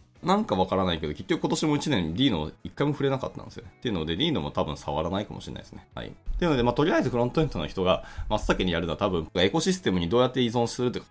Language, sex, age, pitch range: Japanese, male, 20-39, 80-120 Hz